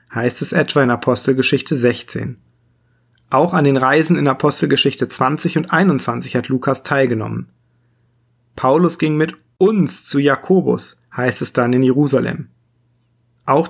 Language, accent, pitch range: German, German, 120-155 Hz